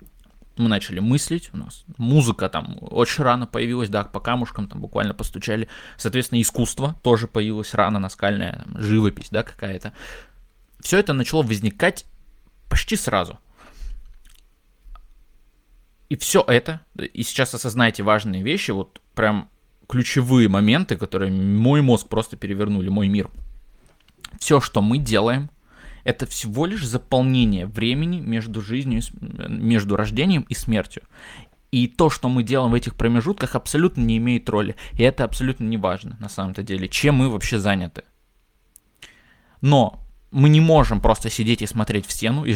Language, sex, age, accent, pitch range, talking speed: Russian, male, 20-39, native, 105-130 Hz, 140 wpm